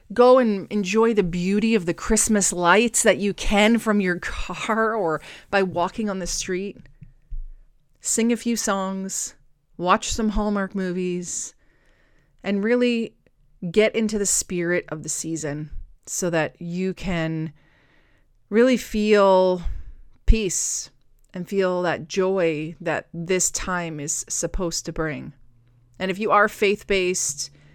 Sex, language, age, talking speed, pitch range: female, English, 30-49, 130 wpm, 155-215 Hz